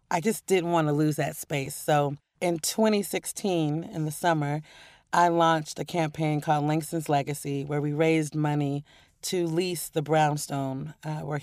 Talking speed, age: 165 wpm, 30-49